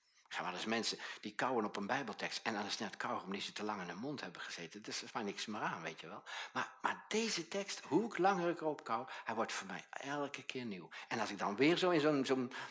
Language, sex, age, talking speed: Dutch, male, 60-79, 275 wpm